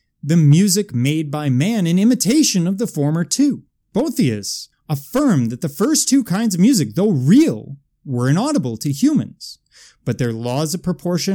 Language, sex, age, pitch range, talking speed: English, male, 30-49, 135-210 Hz, 165 wpm